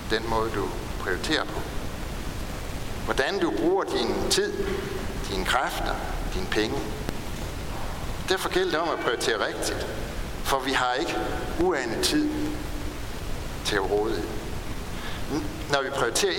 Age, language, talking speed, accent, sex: 60-79, Danish, 120 wpm, native, male